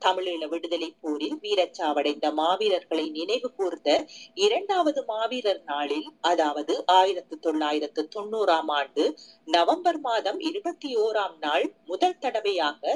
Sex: female